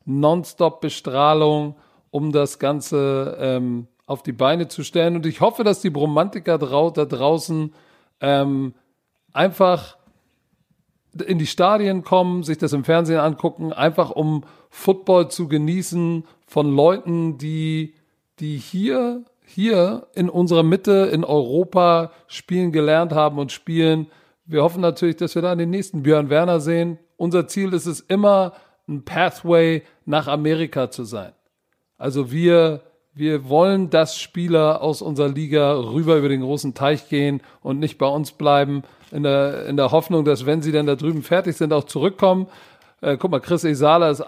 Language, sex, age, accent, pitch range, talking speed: German, male, 40-59, German, 145-175 Hz, 155 wpm